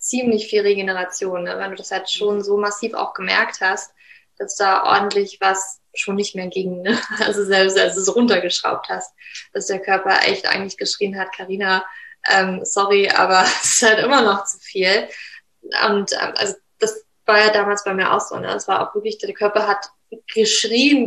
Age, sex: 20-39, female